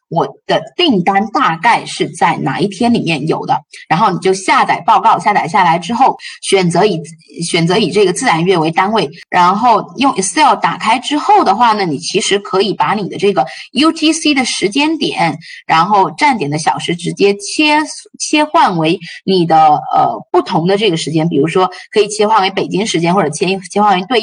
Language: Chinese